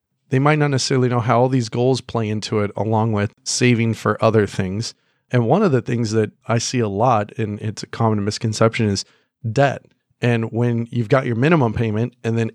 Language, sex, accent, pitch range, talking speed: English, male, American, 110-130 Hz, 210 wpm